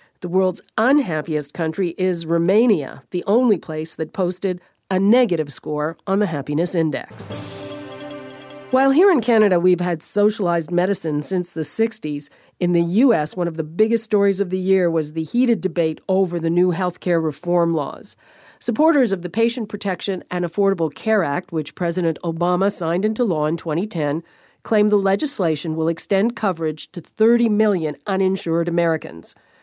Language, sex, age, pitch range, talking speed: English, female, 50-69, 160-205 Hz, 160 wpm